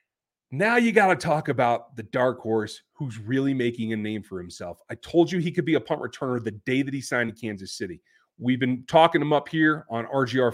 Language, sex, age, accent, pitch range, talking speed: English, male, 30-49, American, 115-150 Hz, 235 wpm